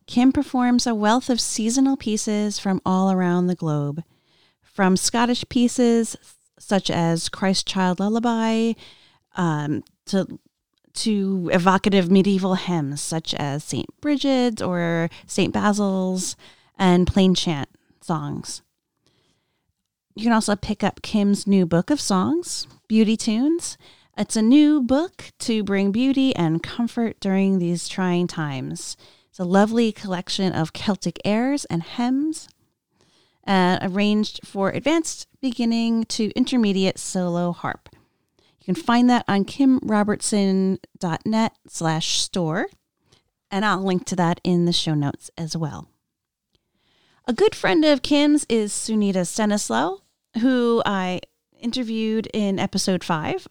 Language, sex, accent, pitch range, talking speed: English, female, American, 180-230 Hz, 125 wpm